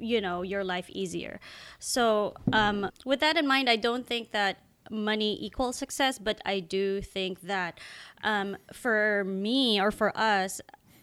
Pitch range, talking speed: 190-235 Hz, 160 wpm